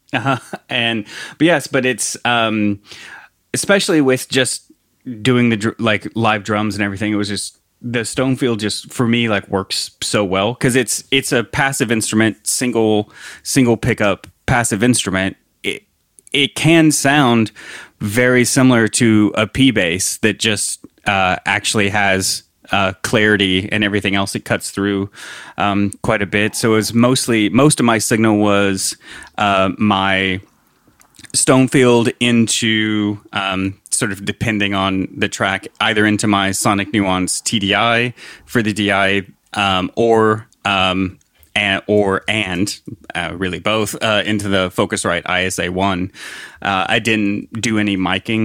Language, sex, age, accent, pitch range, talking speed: English, male, 30-49, American, 100-115 Hz, 140 wpm